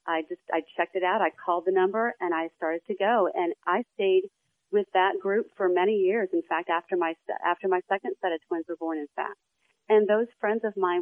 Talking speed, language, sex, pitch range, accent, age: 235 wpm, English, female, 180-225 Hz, American, 40-59